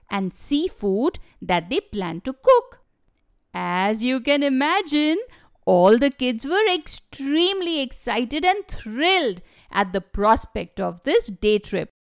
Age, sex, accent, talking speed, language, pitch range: 50-69, female, Indian, 130 wpm, English, 200-310 Hz